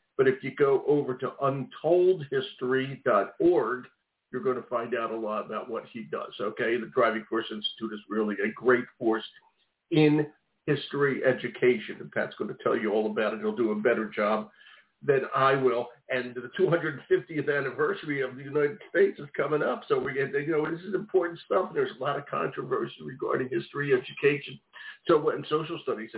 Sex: male